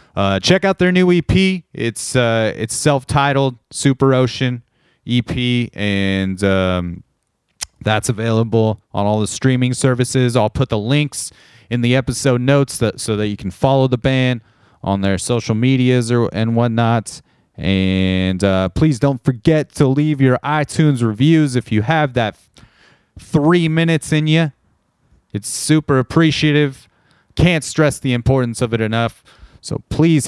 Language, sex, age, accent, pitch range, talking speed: English, male, 30-49, American, 110-150 Hz, 150 wpm